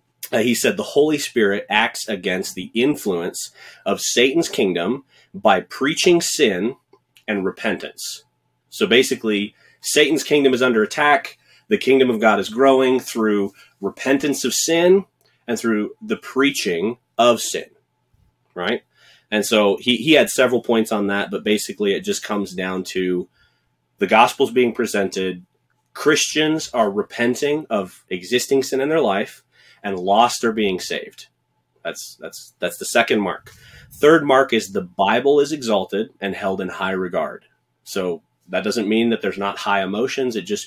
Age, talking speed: 30-49, 155 wpm